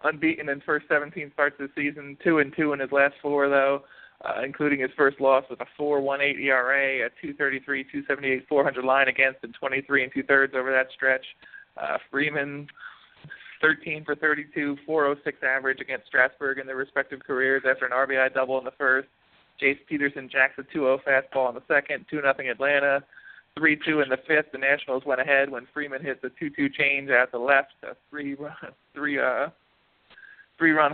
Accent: American